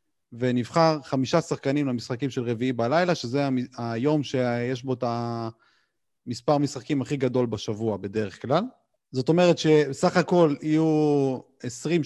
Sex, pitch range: male, 125-175 Hz